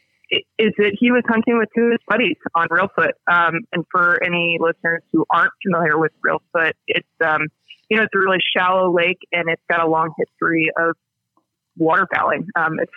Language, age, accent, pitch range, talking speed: English, 20-39, American, 155-195 Hz, 200 wpm